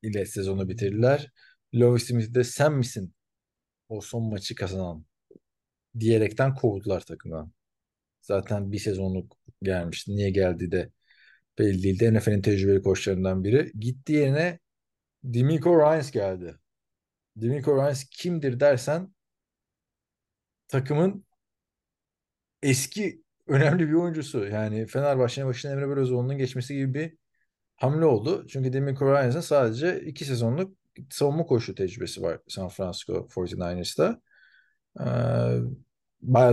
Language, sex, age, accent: Turkish, male, 40-59, native